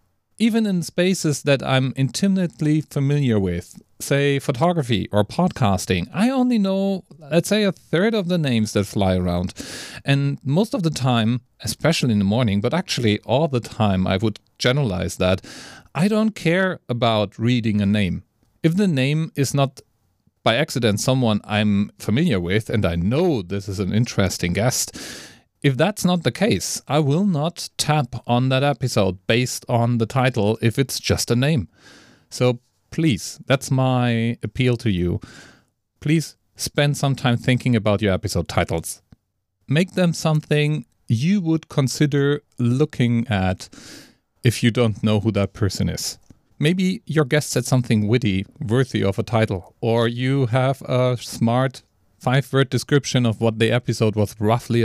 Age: 40-59